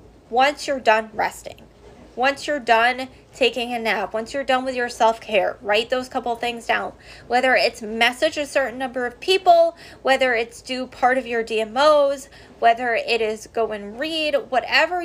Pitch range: 225-275 Hz